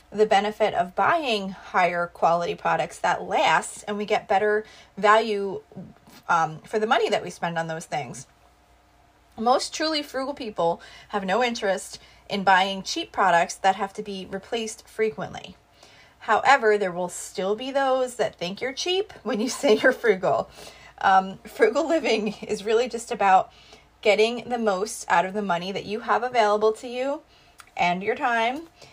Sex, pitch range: female, 190-240 Hz